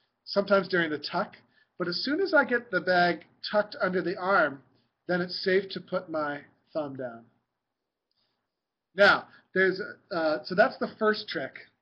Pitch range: 160-205 Hz